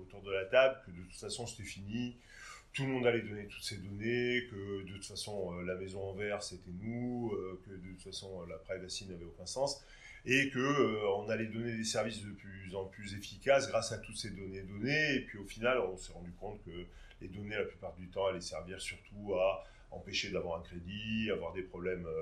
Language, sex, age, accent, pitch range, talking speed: French, male, 30-49, French, 90-120 Hz, 220 wpm